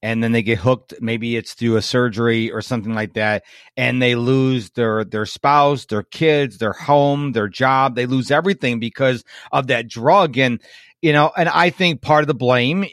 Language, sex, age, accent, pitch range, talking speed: English, male, 40-59, American, 115-145 Hz, 200 wpm